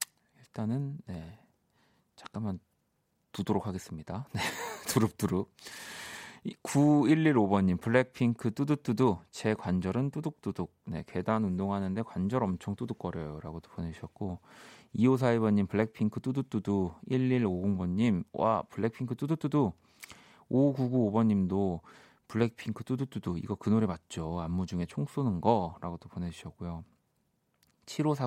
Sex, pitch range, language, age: male, 95-130 Hz, Korean, 40-59